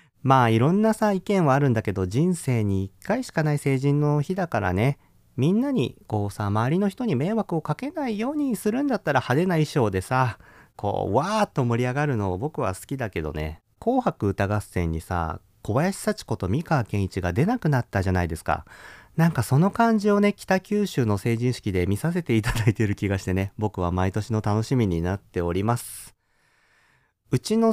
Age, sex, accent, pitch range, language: 40-59, male, native, 100-165 Hz, Japanese